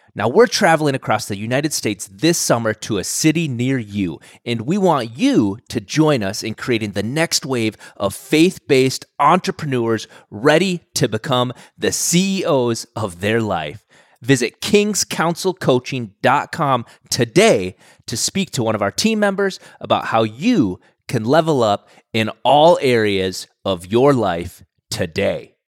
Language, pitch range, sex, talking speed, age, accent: English, 90-140 Hz, male, 140 wpm, 30-49, American